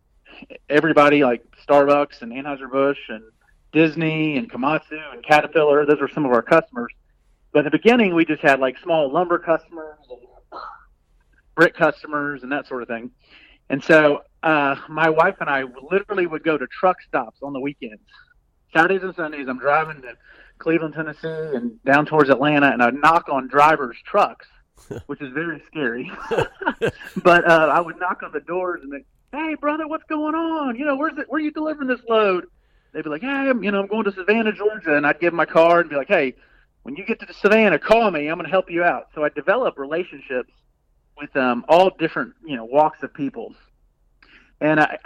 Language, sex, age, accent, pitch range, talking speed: English, male, 40-59, American, 140-185 Hz, 200 wpm